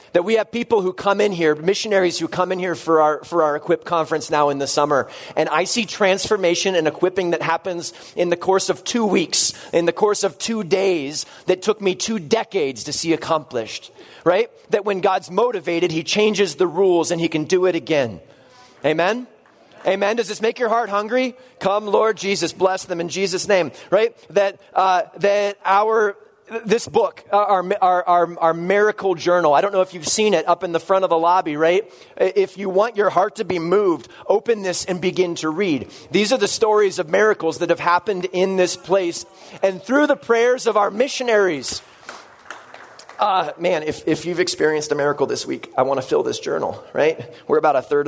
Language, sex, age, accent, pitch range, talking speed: English, male, 30-49, American, 165-210 Hz, 205 wpm